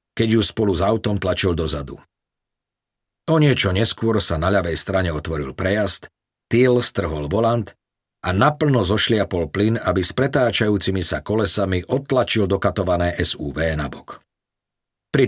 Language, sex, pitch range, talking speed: Slovak, male, 90-115 Hz, 135 wpm